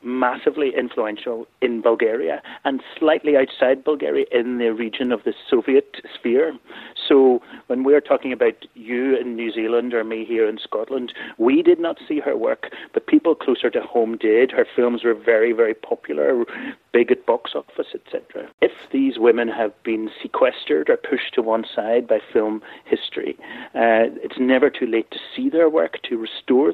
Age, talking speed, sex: 30-49, 175 wpm, male